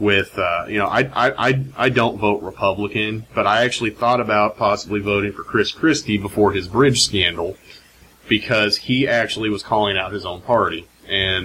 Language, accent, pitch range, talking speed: English, American, 100-115 Hz, 185 wpm